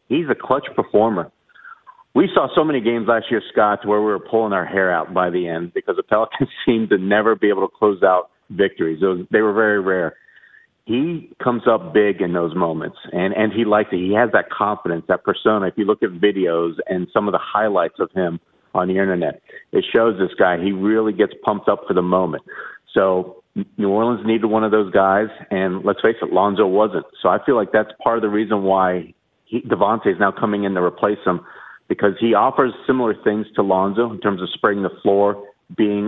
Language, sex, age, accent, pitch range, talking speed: English, male, 50-69, American, 95-110 Hz, 215 wpm